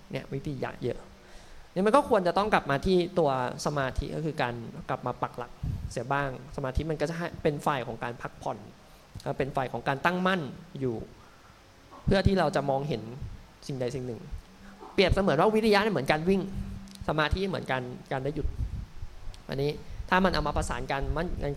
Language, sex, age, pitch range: Thai, male, 20-39, 130-175 Hz